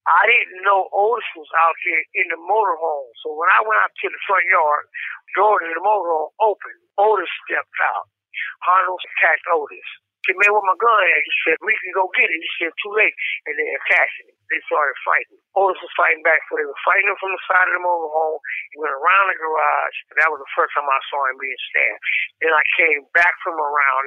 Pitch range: 160-210 Hz